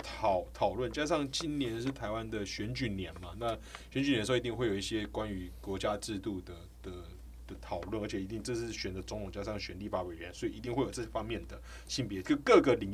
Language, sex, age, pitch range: Chinese, male, 20-39, 95-130 Hz